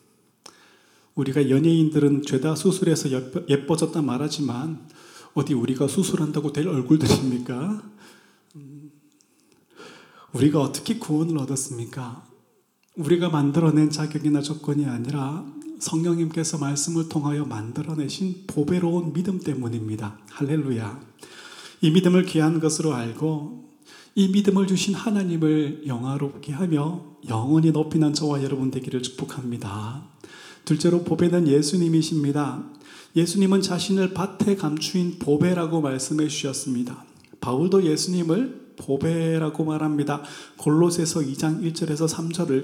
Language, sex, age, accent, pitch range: Korean, male, 30-49, native, 140-165 Hz